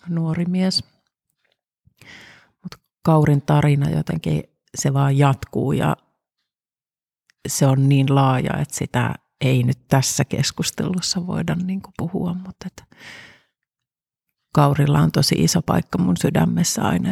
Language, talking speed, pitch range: Finnish, 110 wpm, 135-170 Hz